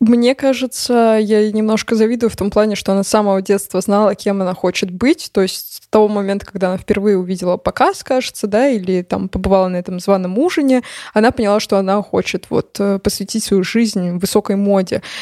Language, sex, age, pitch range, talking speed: Russian, female, 20-39, 195-230 Hz, 190 wpm